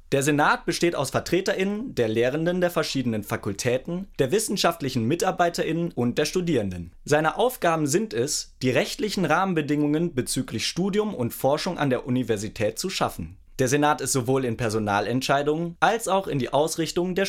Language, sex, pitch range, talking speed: German, male, 115-170 Hz, 155 wpm